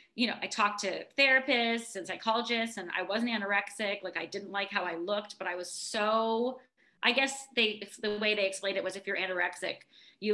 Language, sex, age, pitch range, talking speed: English, female, 20-39, 195-240 Hz, 210 wpm